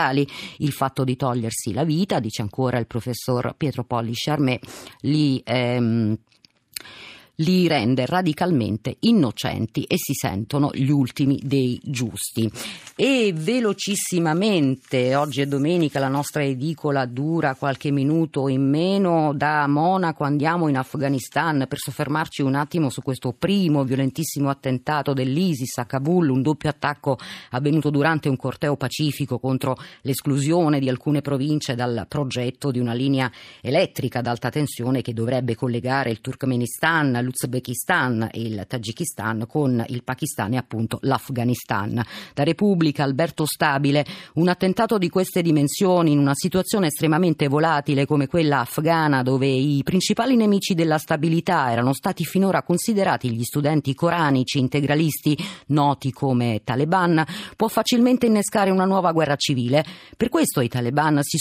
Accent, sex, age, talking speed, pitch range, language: native, female, 30-49, 135 wpm, 130-165 Hz, Italian